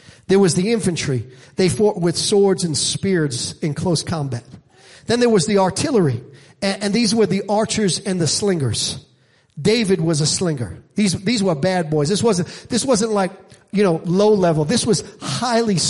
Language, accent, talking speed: English, American, 175 wpm